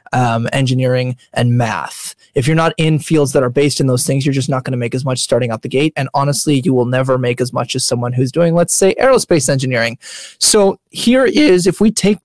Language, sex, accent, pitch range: English, male, American, 130-170 Hz